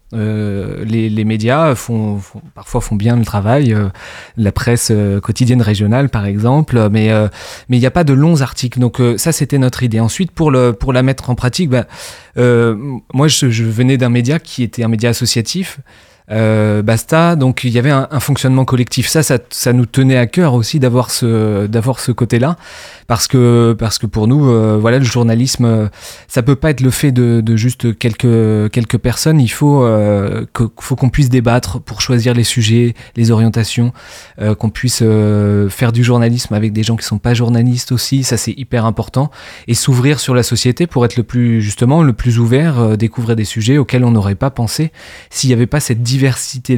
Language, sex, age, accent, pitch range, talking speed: French, male, 20-39, French, 115-130 Hz, 210 wpm